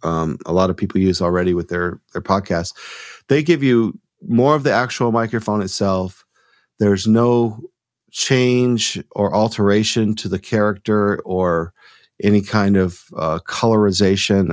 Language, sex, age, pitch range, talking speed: English, male, 40-59, 95-110 Hz, 140 wpm